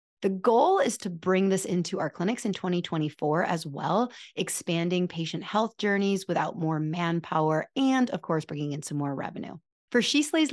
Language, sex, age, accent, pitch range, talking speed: English, female, 30-49, American, 155-220 Hz, 175 wpm